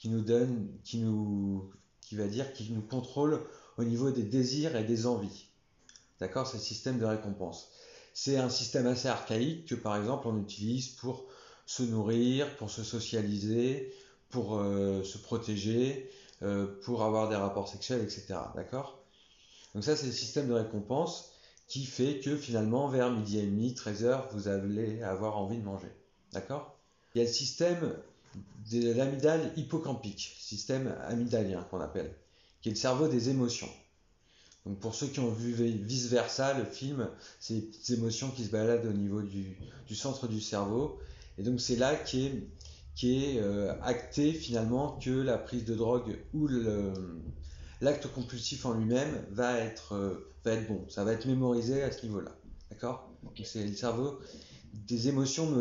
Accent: French